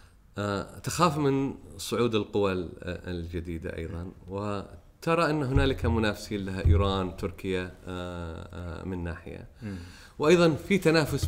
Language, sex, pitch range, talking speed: Arabic, male, 90-135 Hz, 95 wpm